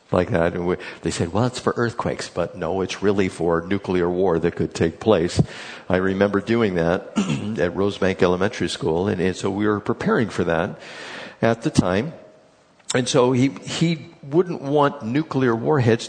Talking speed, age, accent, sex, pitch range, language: 170 wpm, 60-79, American, male, 105-135 Hz, English